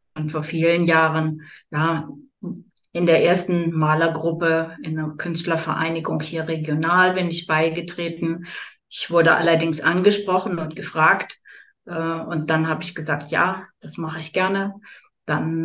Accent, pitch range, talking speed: German, 165-185 Hz, 135 wpm